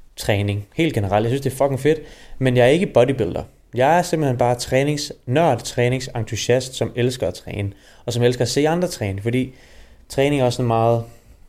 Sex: male